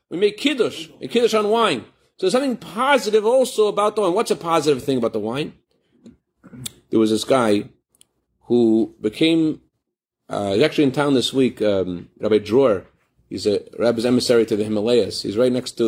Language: English